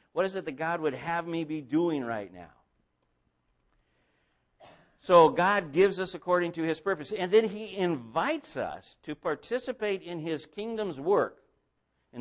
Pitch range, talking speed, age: 125-185 Hz, 155 wpm, 60-79